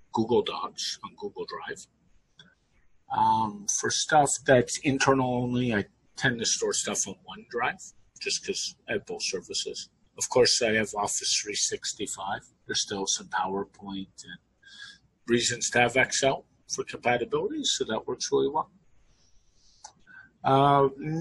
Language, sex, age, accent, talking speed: English, male, 50-69, American, 135 wpm